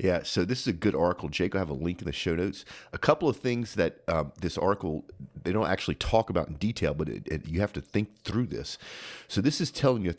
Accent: American